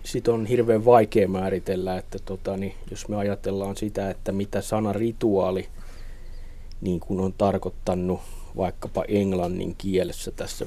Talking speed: 135 wpm